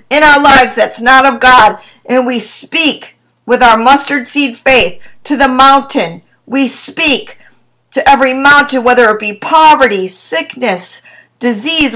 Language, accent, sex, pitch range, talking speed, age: English, American, female, 255-320 Hz, 145 wpm, 50-69